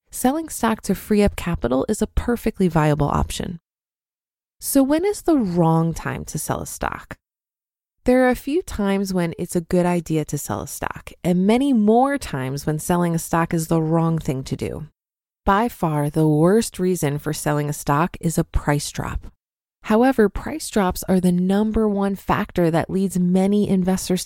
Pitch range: 165-215 Hz